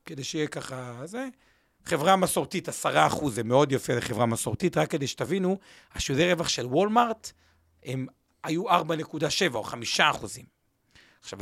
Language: Hebrew